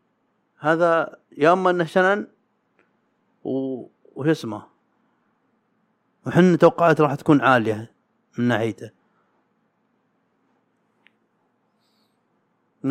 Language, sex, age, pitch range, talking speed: Arabic, male, 30-49, 120-170 Hz, 75 wpm